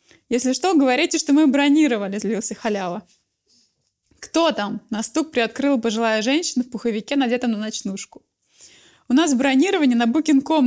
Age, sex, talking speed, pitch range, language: 20-39, female, 140 wpm, 230-285 Hz, Russian